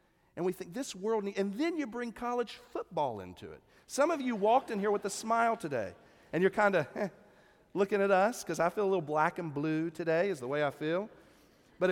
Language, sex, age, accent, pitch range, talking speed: English, male, 40-59, American, 145-210 Hz, 230 wpm